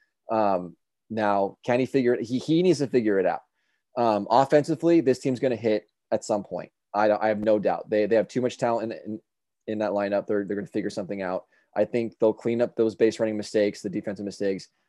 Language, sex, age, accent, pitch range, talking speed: English, male, 20-39, American, 105-120 Hz, 230 wpm